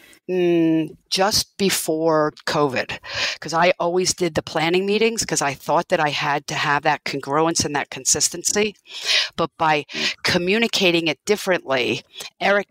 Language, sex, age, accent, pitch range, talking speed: English, female, 50-69, American, 150-180 Hz, 140 wpm